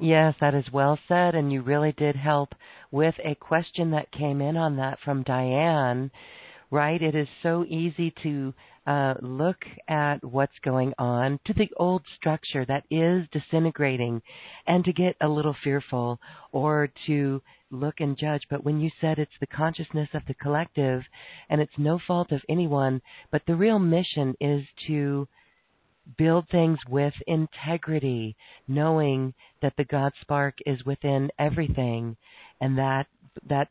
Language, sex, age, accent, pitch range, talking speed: English, female, 50-69, American, 135-160 Hz, 155 wpm